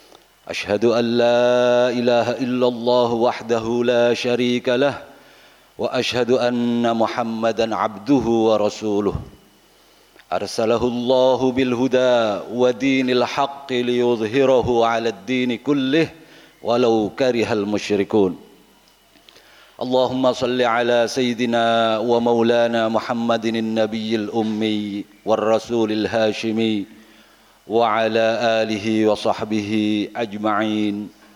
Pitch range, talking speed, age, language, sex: 110-125 Hz, 80 wpm, 50-69, Indonesian, male